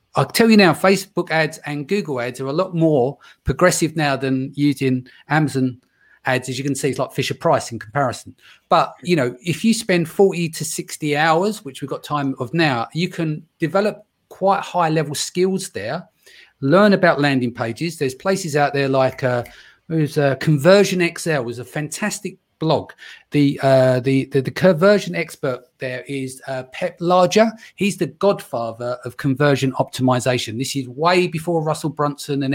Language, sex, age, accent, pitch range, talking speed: English, male, 30-49, British, 135-175 Hz, 175 wpm